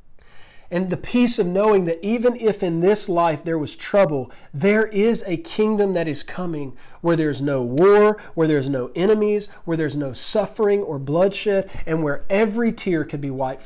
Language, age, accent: English, 40-59, American